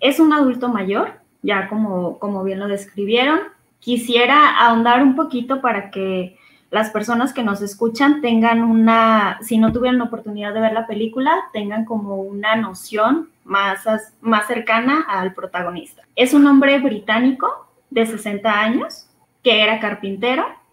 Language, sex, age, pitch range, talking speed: English, female, 20-39, 210-250 Hz, 150 wpm